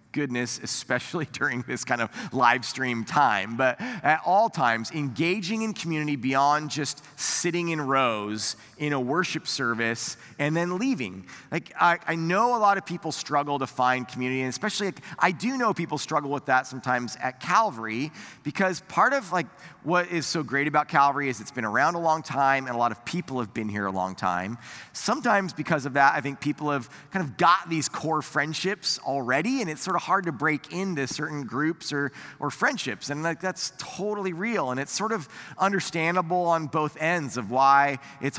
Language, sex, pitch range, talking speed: English, male, 135-180 Hz, 195 wpm